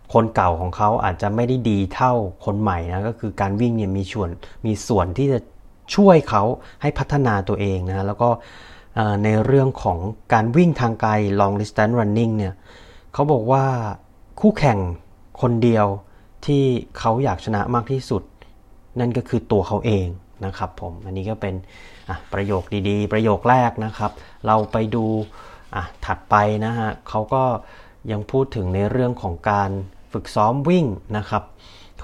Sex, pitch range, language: male, 100-120 Hz, Thai